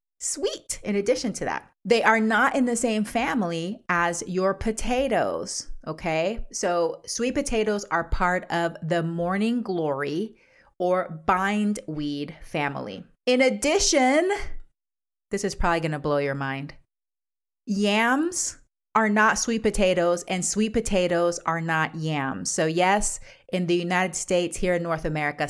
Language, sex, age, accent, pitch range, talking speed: English, female, 30-49, American, 165-210 Hz, 140 wpm